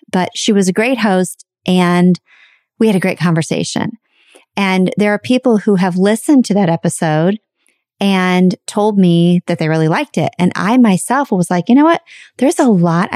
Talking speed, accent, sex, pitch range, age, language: 185 wpm, American, female, 165-200 Hz, 30-49, English